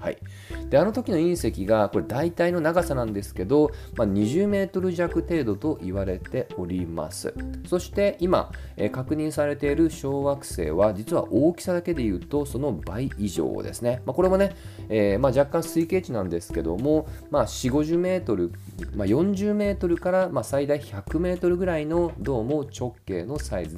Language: Japanese